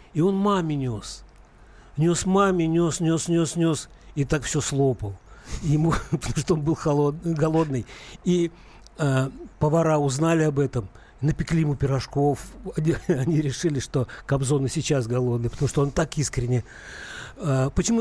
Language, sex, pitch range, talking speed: Russian, male, 135-180 Hz, 150 wpm